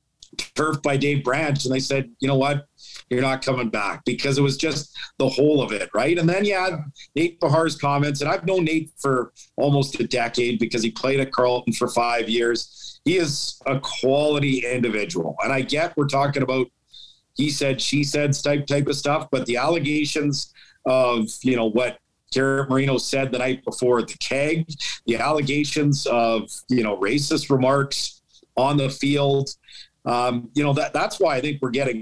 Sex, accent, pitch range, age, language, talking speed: male, American, 120-145 Hz, 50-69, English, 185 wpm